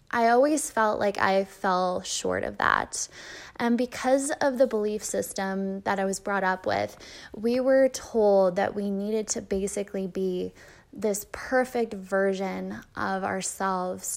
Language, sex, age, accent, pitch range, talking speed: English, female, 10-29, American, 195-230 Hz, 150 wpm